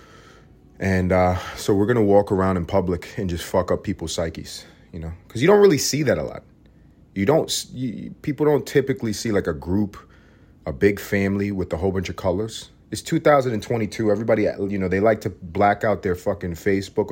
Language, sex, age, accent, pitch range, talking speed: English, male, 30-49, American, 90-110 Hz, 200 wpm